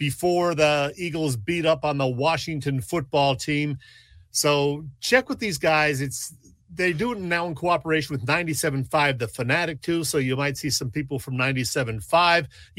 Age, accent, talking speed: 40-59, American, 165 wpm